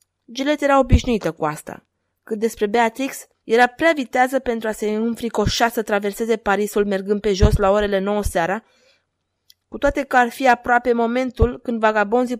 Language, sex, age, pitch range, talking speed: Romanian, female, 20-39, 195-240 Hz, 165 wpm